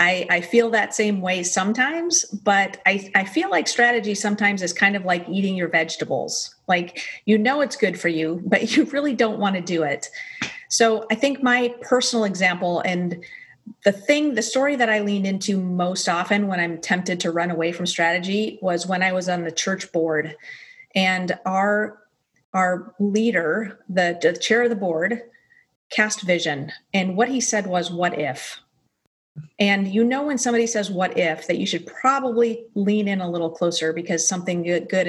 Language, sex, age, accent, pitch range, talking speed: English, female, 30-49, American, 180-235 Hz, 185 wpm